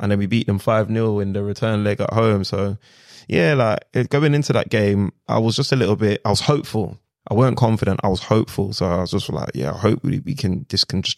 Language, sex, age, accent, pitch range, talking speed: English, male, 20-39, British, 105-125 Hz, 250 wpm